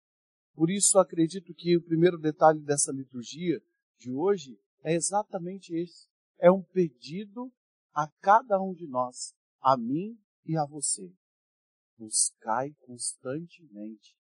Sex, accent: male, Brazilian